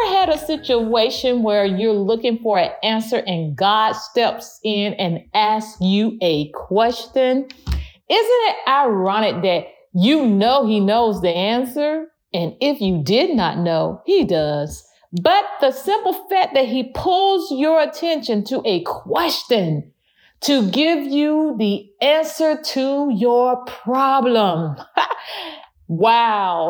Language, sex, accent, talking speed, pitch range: English, female, American, 130 wpm, 205-285 Hz